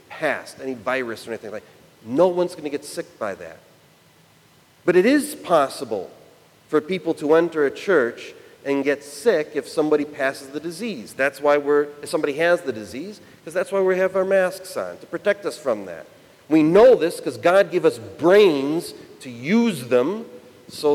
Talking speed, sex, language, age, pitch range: 190 wpm, male, English, 40-59, 135-180 Hz